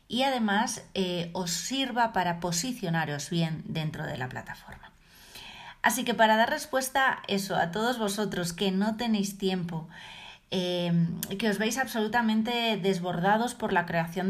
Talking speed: 145 wpm